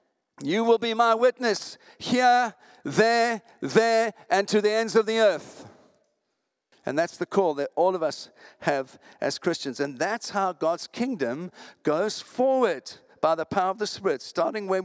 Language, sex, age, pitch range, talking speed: English, male, 50-69, 165-230 Hz, 165 wpm